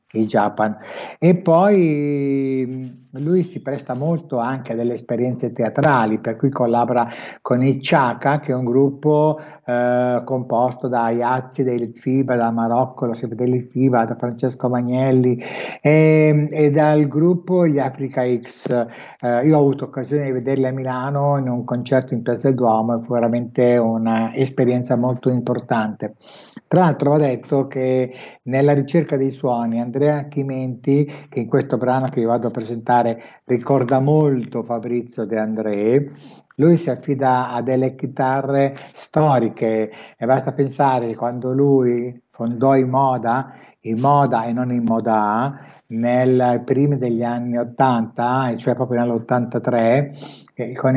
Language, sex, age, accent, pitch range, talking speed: Italian, male, 60-79, native, 120-140 Hz, 140 wpm